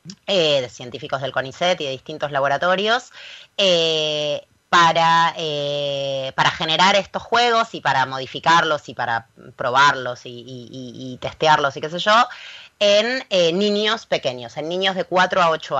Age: 20-39